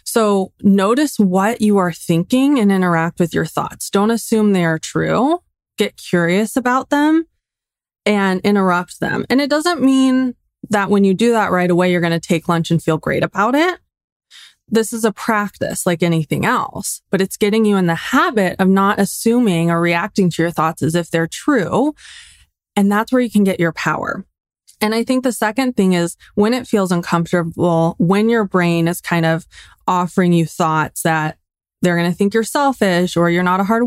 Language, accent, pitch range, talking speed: English, American, 175-230 Hz, 195 wpm